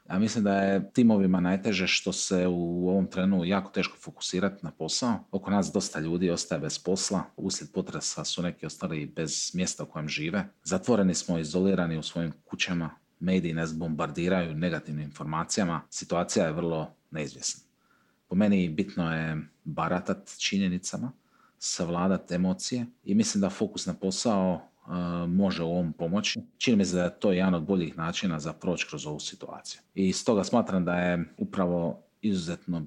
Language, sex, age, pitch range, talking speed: Croatian, male, 40-59, 80-95 Hz, 160 wpm